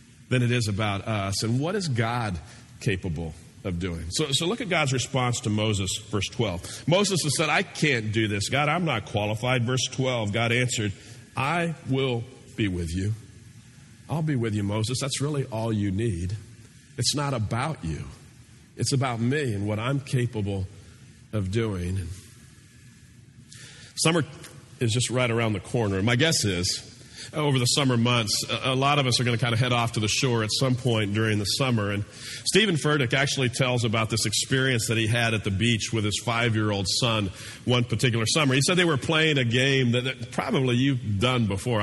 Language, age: English, 40-59